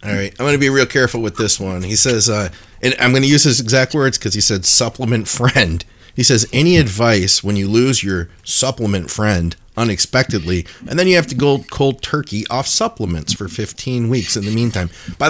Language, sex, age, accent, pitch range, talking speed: English, male, 30-49, American, 95-120 Hz, 215 wpm